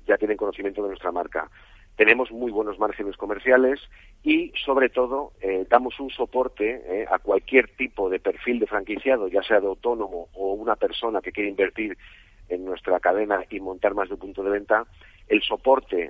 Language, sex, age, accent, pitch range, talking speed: Spanish, male, 40-59, Spanish, 100-120 Hz, 185 wpm